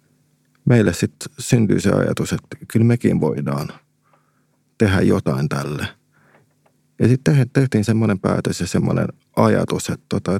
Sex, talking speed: male, 120 wpm